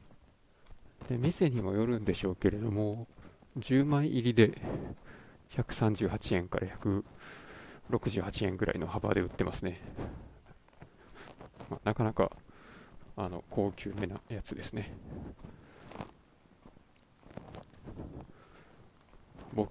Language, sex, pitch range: Japanese, male, 100-130 Hz